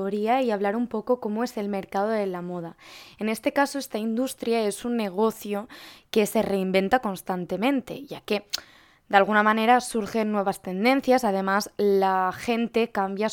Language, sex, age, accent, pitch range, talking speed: Spanish, female, 20-39, Spanish, 200-250 Hz, 160 wpm